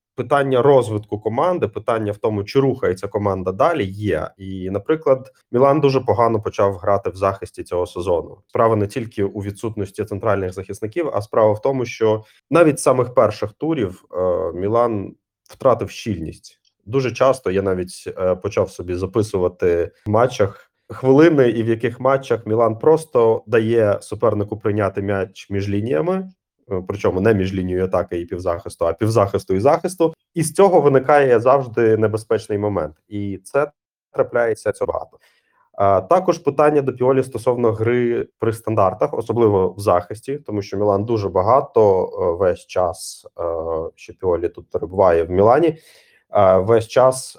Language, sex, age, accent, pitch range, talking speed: Ukrainian, male, 20-39, native, 100-145 Hz, 140 wpm